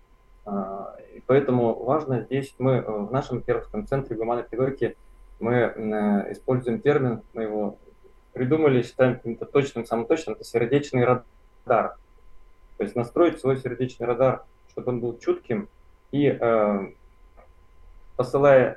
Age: 20-39